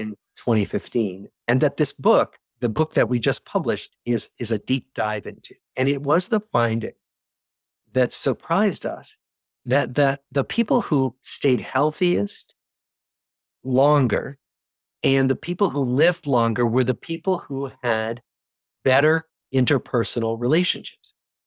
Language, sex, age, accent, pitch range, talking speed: English, male, 50-69, American, 115-145 Hz, 130 wpm